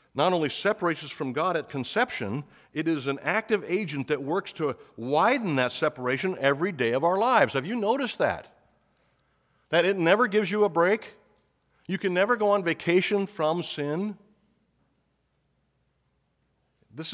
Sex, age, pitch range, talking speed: male, 50-69, 135-190 Hz, 155 wpm